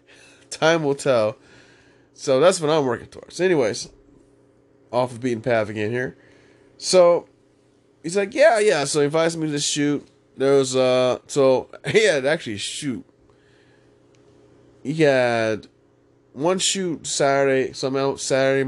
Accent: American